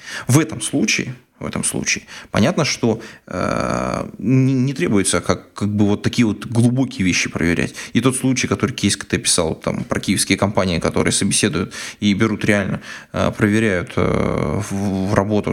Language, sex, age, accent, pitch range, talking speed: Russian, male, 20-39, native, 100-120 Hz, 165 wpm